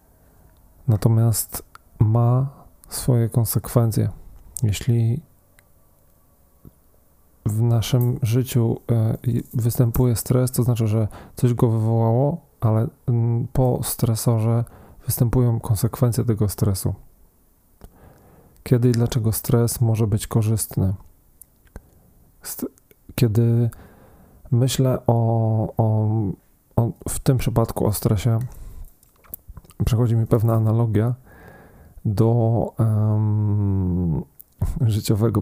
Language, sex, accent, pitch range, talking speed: Polish, male, native, 105-120 Hz, 75 wpm